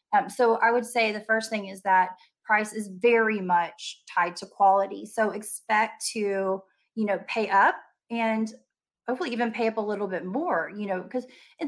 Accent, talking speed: American, 190 wpm